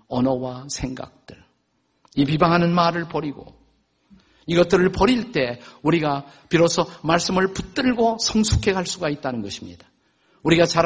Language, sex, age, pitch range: Korean, male, 50-69, 130-185 Hz